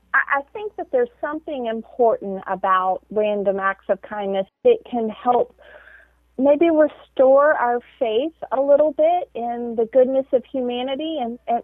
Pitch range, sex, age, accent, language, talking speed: 210-270 Hz, female, 40-59, American, English, 140 wpm